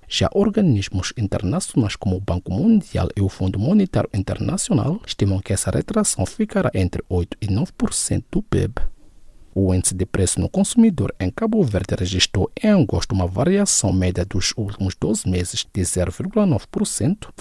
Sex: male